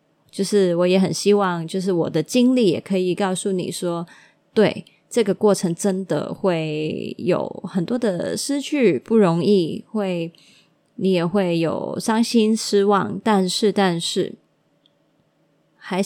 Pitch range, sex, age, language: 175-215 Hz, female, 20-39, Chinese